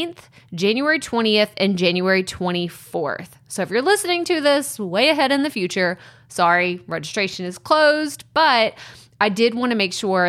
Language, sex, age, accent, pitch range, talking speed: English, female, 20-39, American, 180-235 Hz, 155 wpm